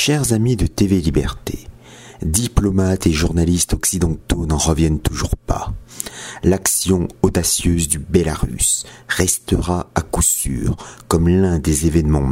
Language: French